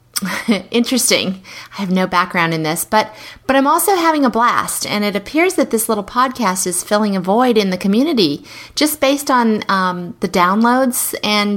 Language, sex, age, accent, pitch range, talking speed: English, female, 30-49, American, 185-235 Hz, 180 wpm